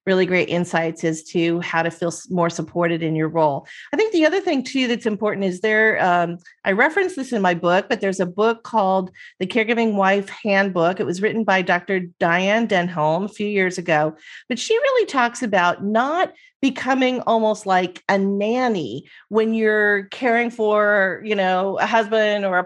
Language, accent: English, American